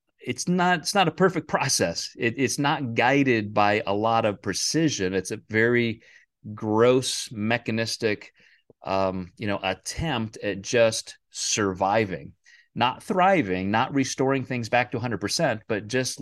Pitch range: 100-125 Hz